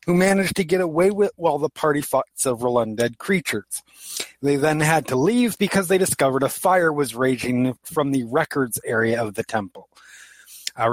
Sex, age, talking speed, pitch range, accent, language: male, 30-49, 185 wpm, 120-160 Hz, American, English